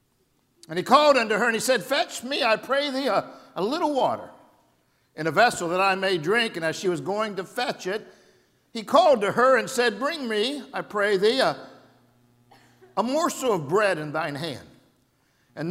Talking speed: 200 wpm